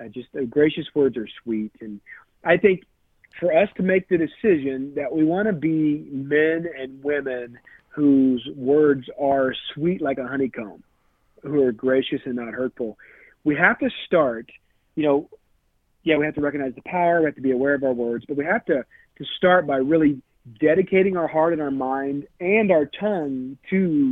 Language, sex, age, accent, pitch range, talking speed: English, male, 40-59, American, 130-170 Hz, 190 wpm